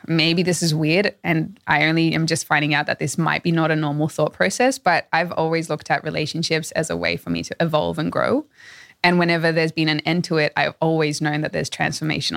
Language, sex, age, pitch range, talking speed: English, female, 20-39, 160-195 Hz, 240 wpm